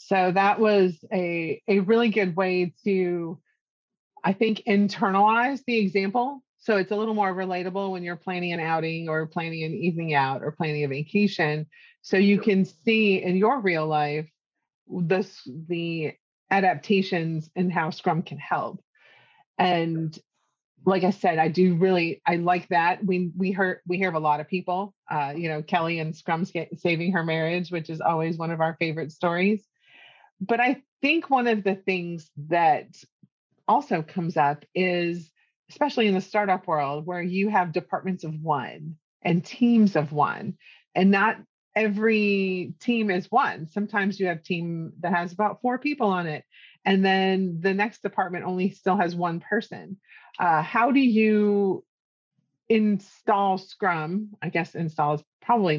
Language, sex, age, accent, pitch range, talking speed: English, female, 30-49, American, 165-205 Hz, 160 wpm